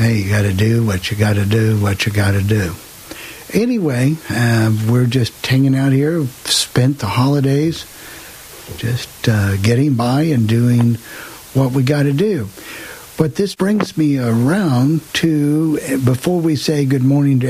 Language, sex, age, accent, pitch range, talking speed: English, male, 60-79, American, 115-140 Hz, 160 wpm